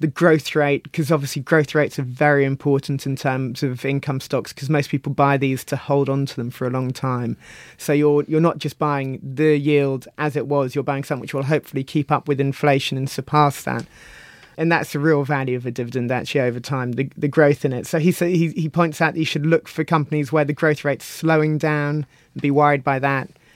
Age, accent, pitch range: 30-49, British, 135-155 Hz